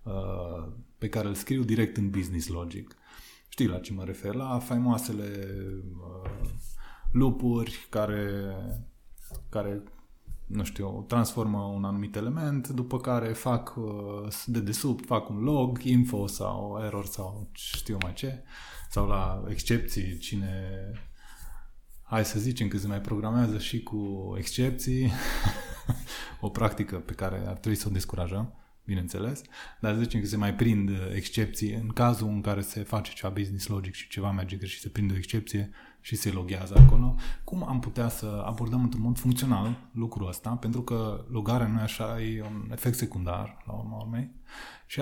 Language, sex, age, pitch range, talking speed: Romanian, male, 20-39, 100-120 Hz, 155 wpm